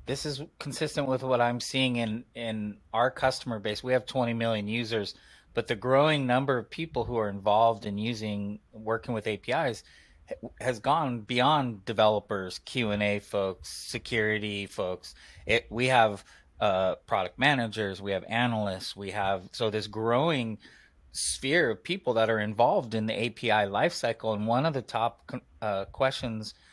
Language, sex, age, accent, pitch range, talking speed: English, male, 30-49, American, 100-120 Hz, 160 wpm